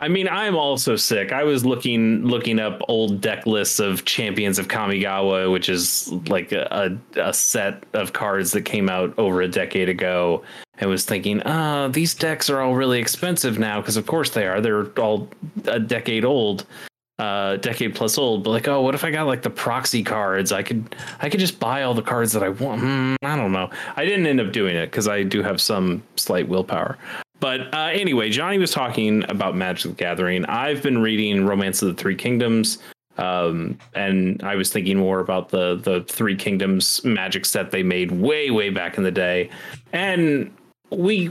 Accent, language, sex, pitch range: American, English, male, 95-135 Hz